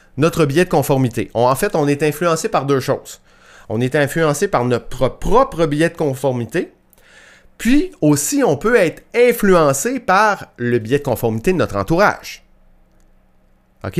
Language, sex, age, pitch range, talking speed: French, male, 30-49, 105-160 Hz, 160 wpm